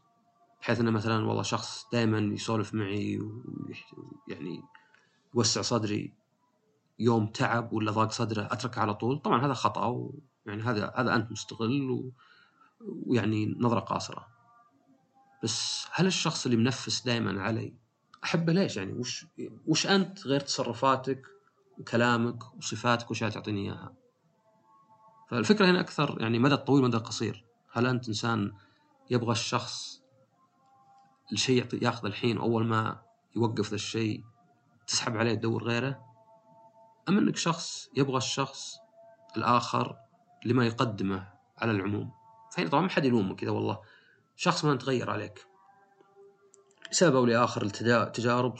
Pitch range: 110-165 Hz